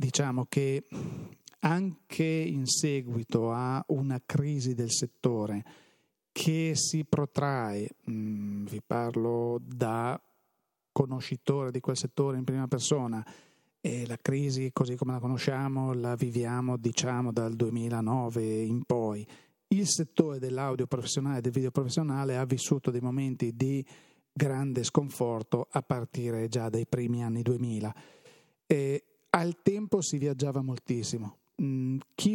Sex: male